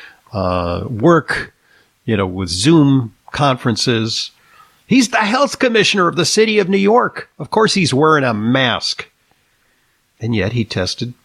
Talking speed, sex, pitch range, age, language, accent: 145 wpm, male, 110-150 Hz, 50-69, English, American